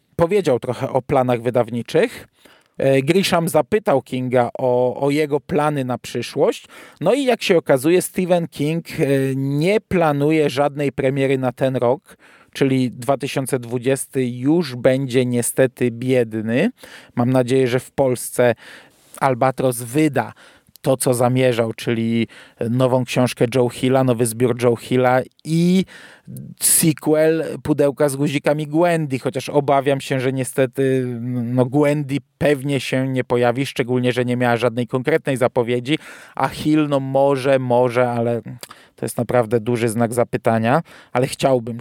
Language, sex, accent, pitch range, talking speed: Polish, male, native, 125-155 Hz, 130 wpm